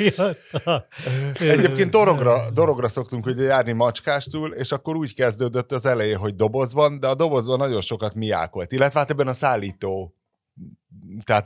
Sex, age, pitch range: male, 30-49, 105-135 Hz